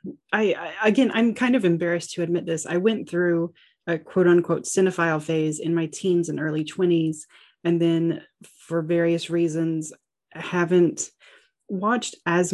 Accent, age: American, 30-49